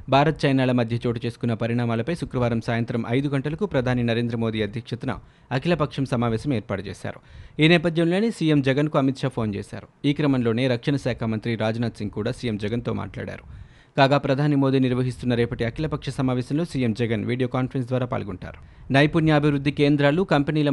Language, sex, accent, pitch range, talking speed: Telugu, male, native, 115-140 Hz, 155 wpm